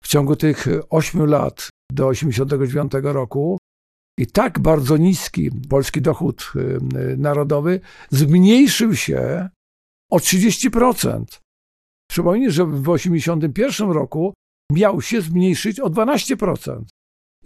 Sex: male